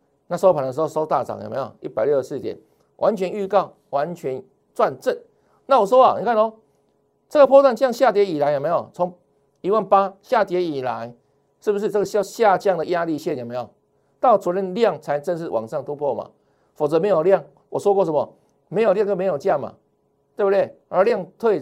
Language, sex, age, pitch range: Chinese, male, 50-69, 165-235 Hz